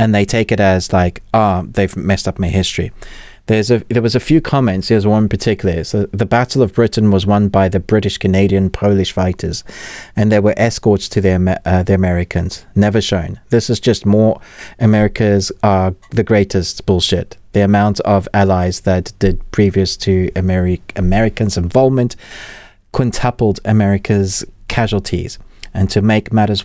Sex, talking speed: male, 165 wpm